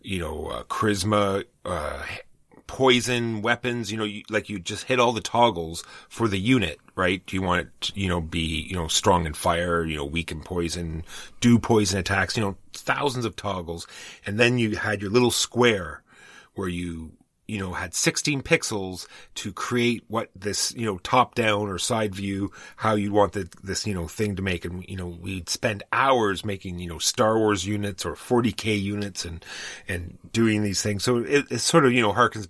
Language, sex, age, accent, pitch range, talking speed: English, male, 30-49, American, 95-120 Hz, 200 wpm